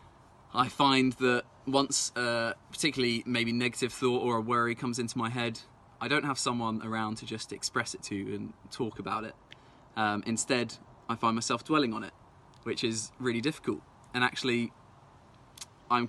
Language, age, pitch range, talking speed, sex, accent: English, 20-39, 110-125 Hz, 170 wpm, male, British